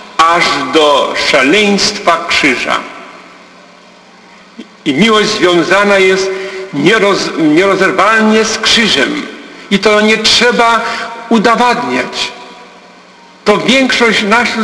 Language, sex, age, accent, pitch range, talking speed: Polish, male, 50-69, native, 180-230 Hz, 80 wpm